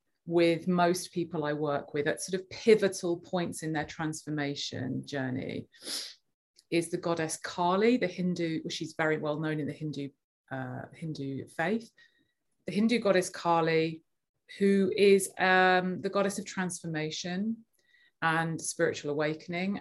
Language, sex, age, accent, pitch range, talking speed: English, female, 30-49, British, 160-210 Hz, 135 wpm